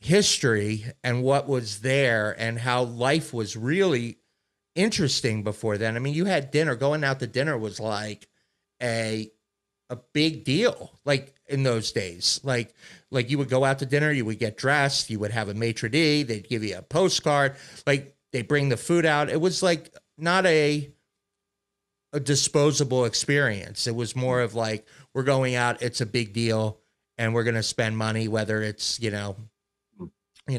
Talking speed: 180 wpm